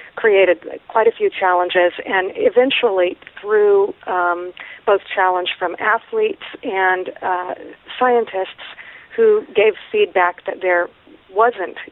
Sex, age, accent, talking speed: female, 50-69, American, 110 wpm